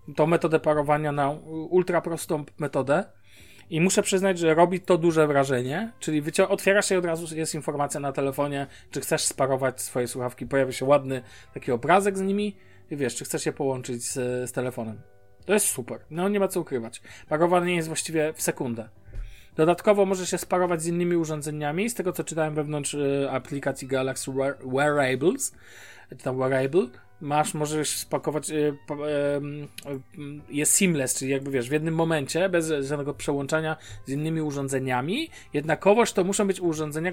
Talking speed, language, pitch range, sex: 160 wpm, Polish, 130-170 Hz, male